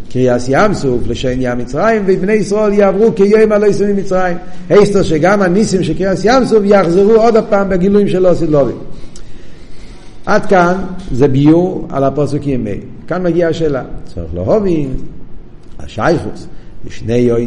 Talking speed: 130 wpm